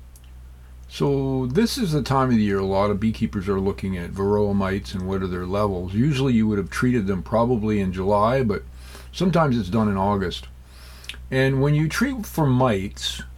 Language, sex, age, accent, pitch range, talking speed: English, male, 50-69, American, 90-130 Hz, 195 wpm